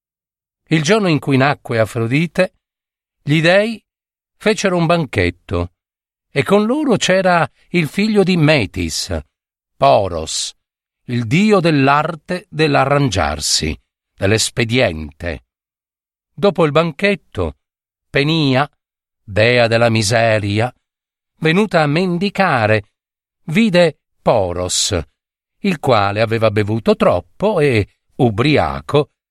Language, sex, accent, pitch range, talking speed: Italian, male, native, 100-165 Hz, 90 wpm